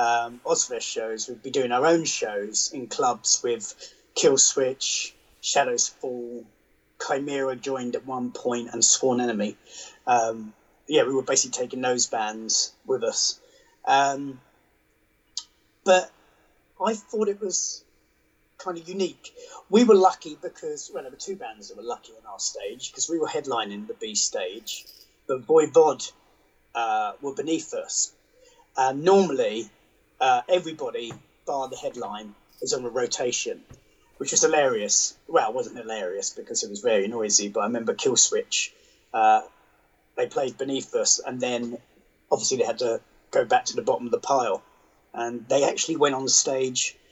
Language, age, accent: English, 30-49, British